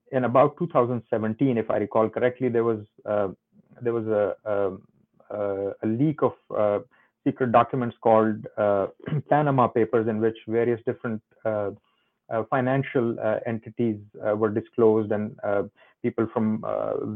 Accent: Indian